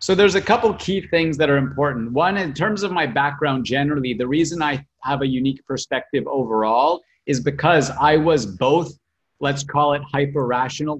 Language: English